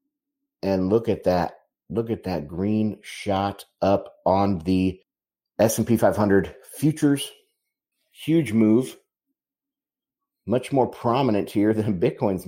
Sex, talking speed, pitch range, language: male, 120 wpm, 100-145 Hz, English